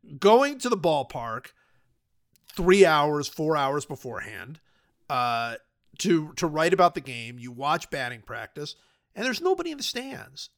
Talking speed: 145 wpm